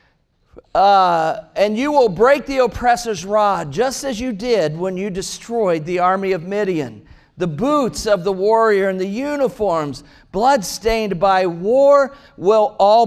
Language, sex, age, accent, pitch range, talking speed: English, male, 50-69, American, 190-250 Hz, 145 wpm